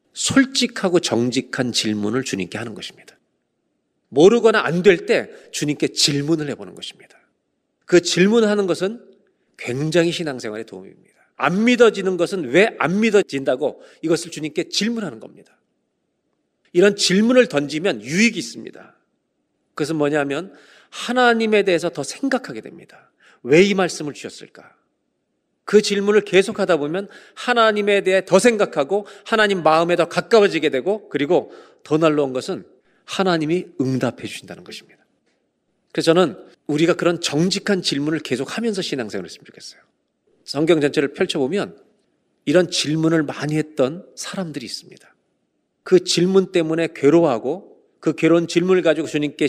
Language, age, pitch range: Korean, 40-59, 145-200 Hz